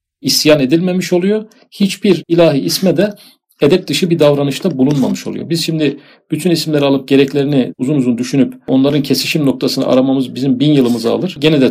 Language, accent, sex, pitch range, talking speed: Turkish, native, male, 135-180 Hz, 165 wpm